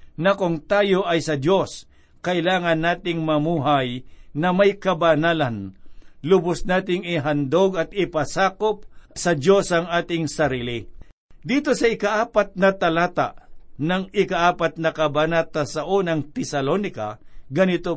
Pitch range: 155-195 Hz